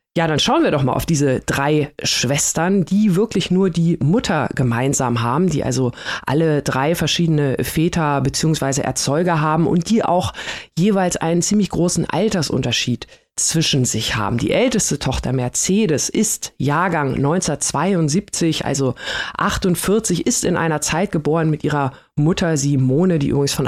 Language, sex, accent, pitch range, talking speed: German, female, German, 145-175 Hz, 145 wpm